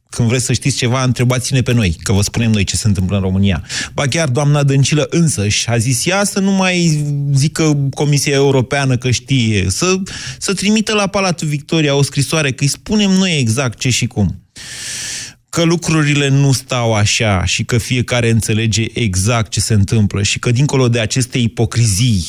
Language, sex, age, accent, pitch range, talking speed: Romanian, male, 20-39, native, 110-145 Hz, 185 wpm